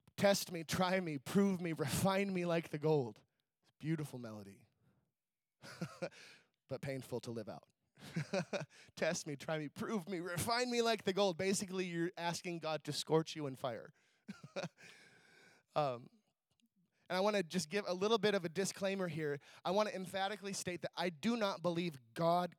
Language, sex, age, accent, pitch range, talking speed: English, male, 20-39, American, 150-185 Hz, 170 wpm